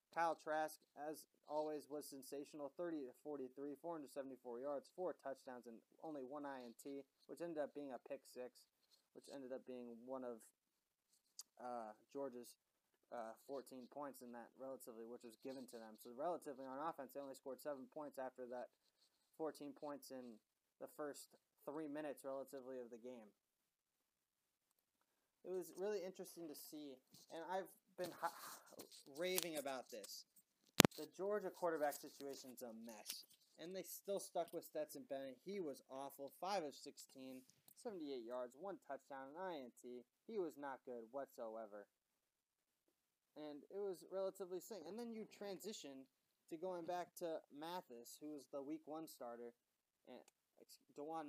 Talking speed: 155 wpm